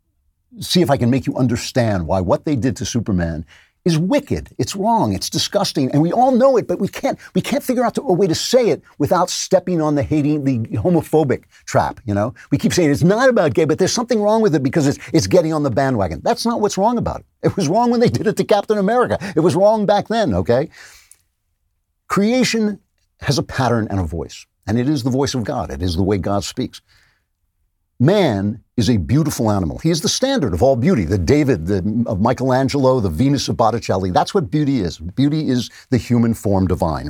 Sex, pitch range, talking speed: male, 100-165 Hz, 225 wpm